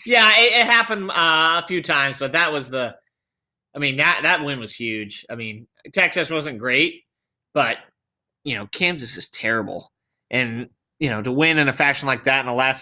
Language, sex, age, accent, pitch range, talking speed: English, male, 20-39, American, 120-150 Hz, 200 wpm